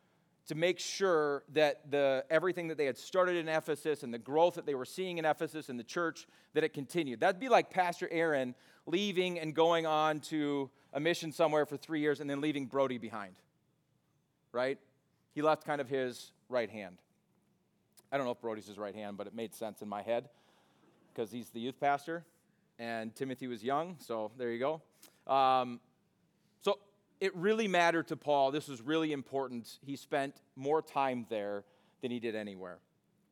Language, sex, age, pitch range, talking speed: English, male, 40-59, 135-180 Hz, 185 wpm